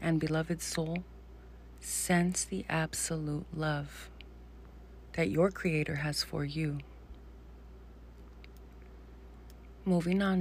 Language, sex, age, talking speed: English, female, 30-49, 85 wpm